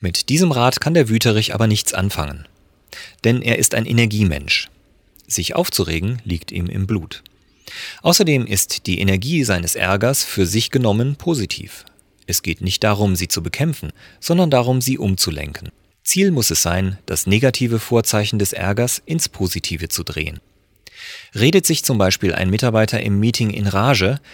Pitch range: 90-120 Hz